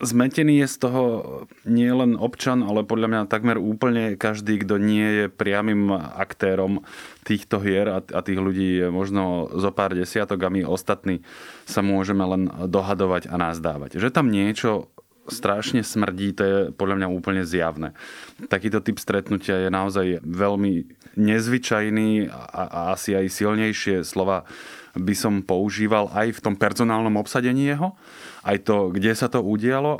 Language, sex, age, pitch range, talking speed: Slovak, male, 20-39, 95-110 Hz, 145 wpm